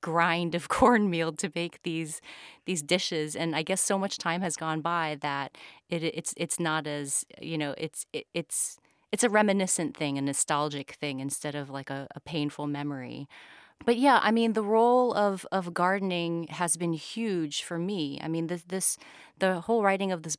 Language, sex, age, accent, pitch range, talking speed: English, female, 30-49, American, 155-185 Hz, 190 wpm